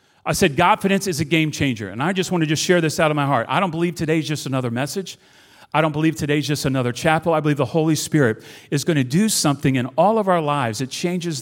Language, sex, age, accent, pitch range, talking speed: English, male, 40-59, American, 120-160 Hz, 265 wpm